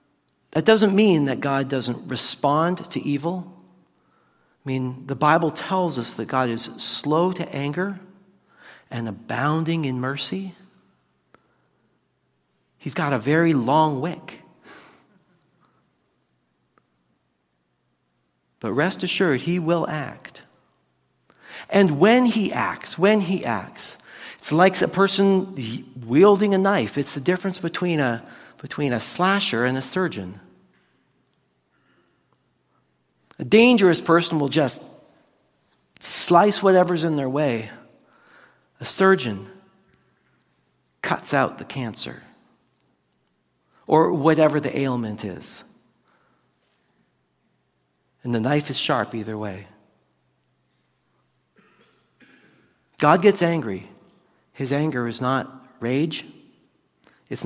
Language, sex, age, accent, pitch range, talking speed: English, male, 50-69, American, 115-175 Hz, 105 wpm